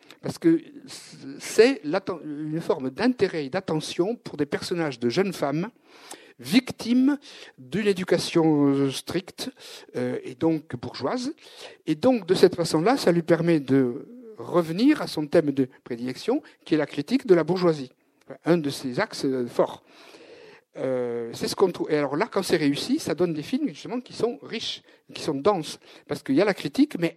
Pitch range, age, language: 140-230 Hz, 60-79, French